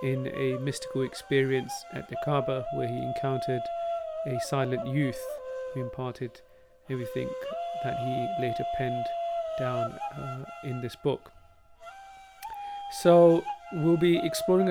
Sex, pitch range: male, 135-175 Hz